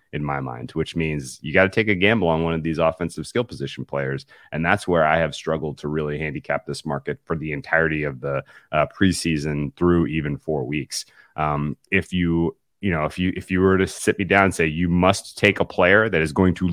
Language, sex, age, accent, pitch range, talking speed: English, male, 30-49, American, 85-130 Hz, 235 wpm